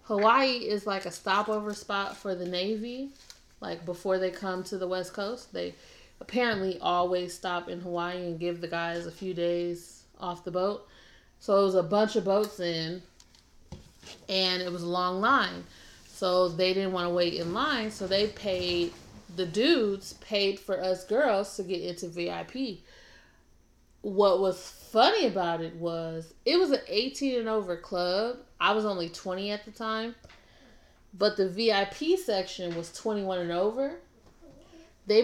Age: 30-49